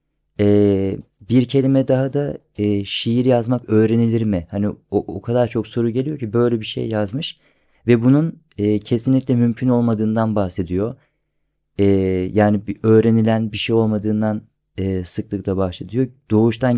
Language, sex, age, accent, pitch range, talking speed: Turkish, male, 30-49, native, 100-115 Hz, 140 wpm